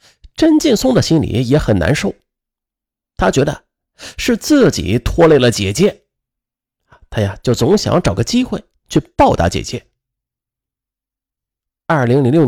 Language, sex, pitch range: Chinese, male, 110-175 Hz